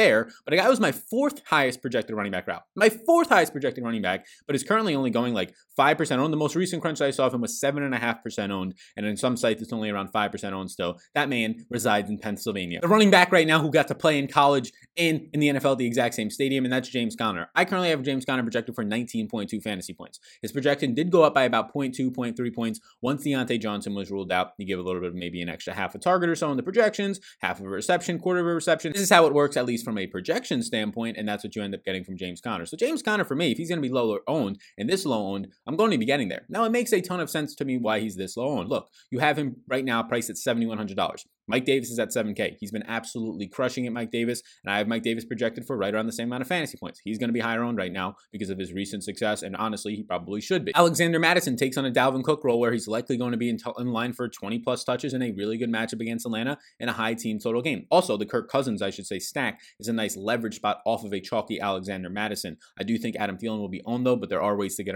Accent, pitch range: American, 105-145 Hz